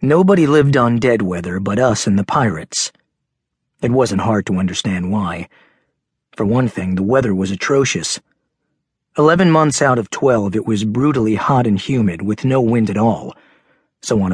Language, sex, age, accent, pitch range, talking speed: English, male, 40-59, American, 100-130 Hz, 170 wpm